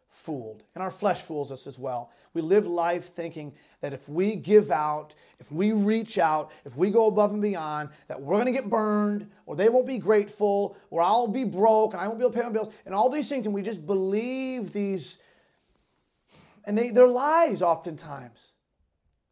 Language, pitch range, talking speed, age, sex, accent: English, 175-235 Hz, 200 wpm, 30-49, male, American